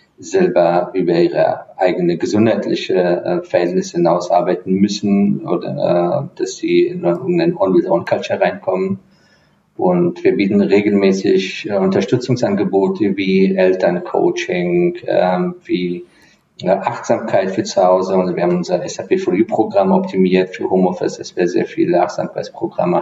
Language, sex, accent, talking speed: English, male, German, 125 wpm